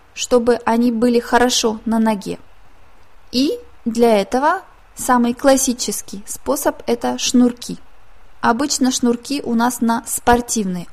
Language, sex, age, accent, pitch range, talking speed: Russian, female, 20-39, native, 220-260 Hz, 110 wpm